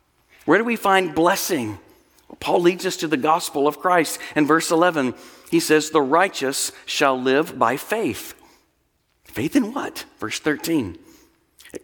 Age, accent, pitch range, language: 50-69, American, 135-175 Hz, English